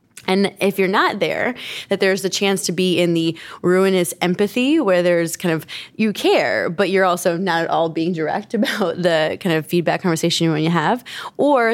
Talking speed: 210 wpm